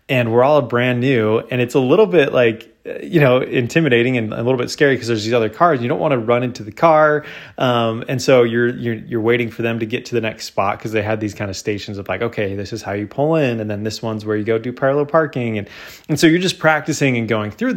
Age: 20-39